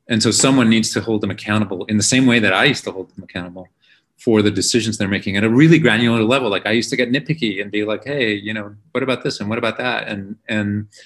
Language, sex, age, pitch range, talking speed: English, male, 30-49, 105-120 Hz, 270 wpm